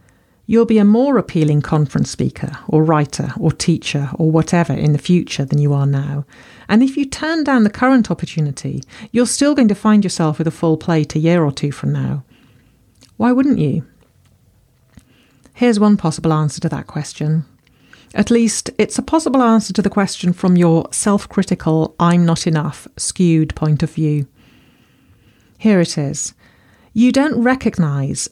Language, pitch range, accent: English, 150-190 Hz, British